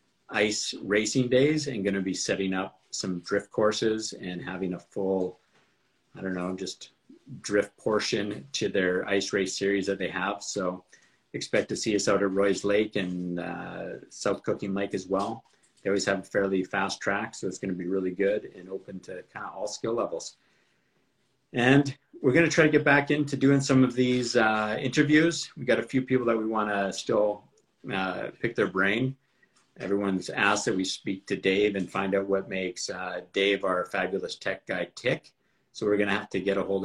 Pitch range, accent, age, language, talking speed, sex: 95-115 Hz, American, 50-69, English, 200 wpm, male